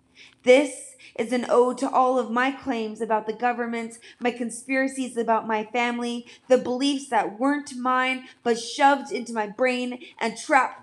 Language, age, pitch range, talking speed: English, 20-39, 225-265 Hz, 160 wpm